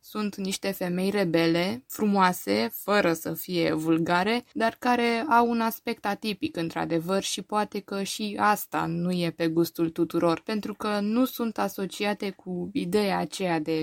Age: 20-39